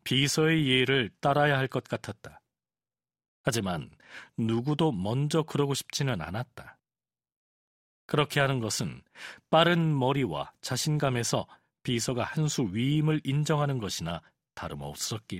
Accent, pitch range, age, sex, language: native, 125-155 Hz, 40-59, male, Korean